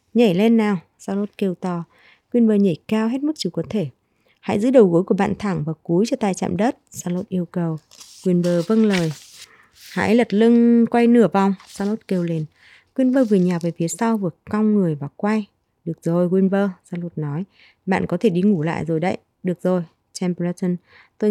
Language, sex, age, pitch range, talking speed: Vietnamese, female, 20-39, 170-215 Hz, 195 wpm